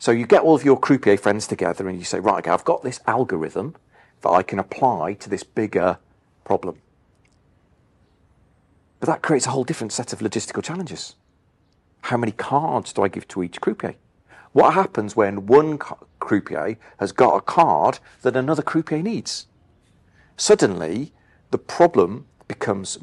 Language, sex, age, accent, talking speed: English, male, 40-59, British, 160 wpm